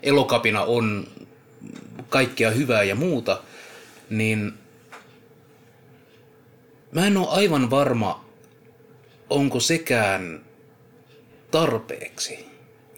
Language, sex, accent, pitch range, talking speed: Finnish, male, native, 100-140 Hz, 70 wpm